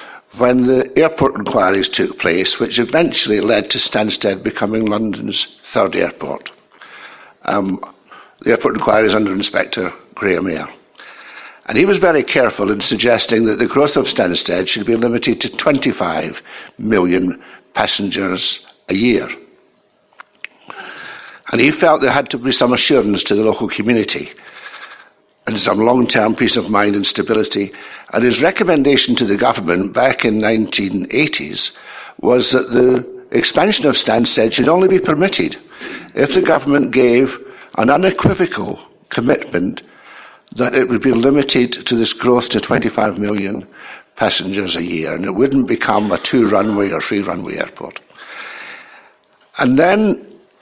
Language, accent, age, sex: English, British, 60-79, male